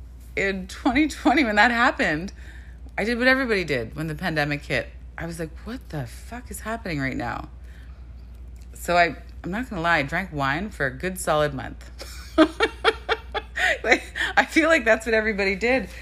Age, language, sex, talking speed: 30-49, English, female, 175 wpm